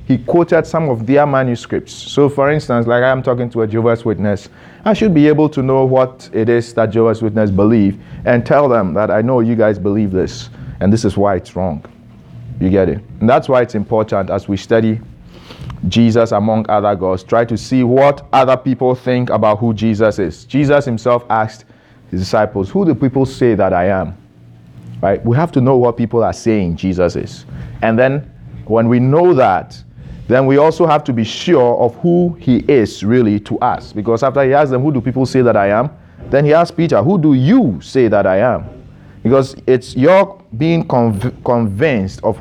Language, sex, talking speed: English, male, 200 wpm